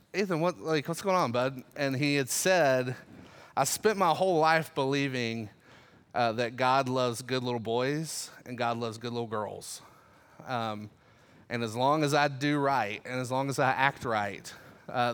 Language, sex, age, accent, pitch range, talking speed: English, male, 30-49, American, 120-150 Hz, 175 wpm